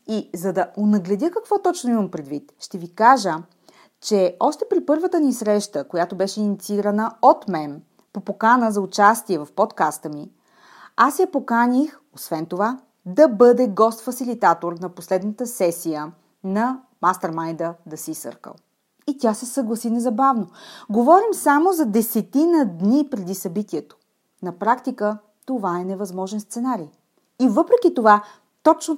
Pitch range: 180-250 Hz